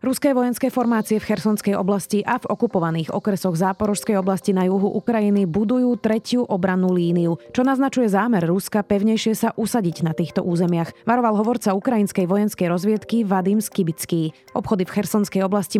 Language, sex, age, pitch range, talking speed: Slovak, female, 30-49, 180-220 Hz, 150 wpm